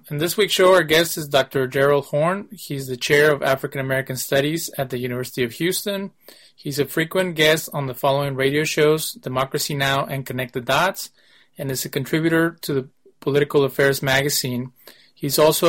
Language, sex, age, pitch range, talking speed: English, male, 30-49, 130-155 Hz, 185 wpm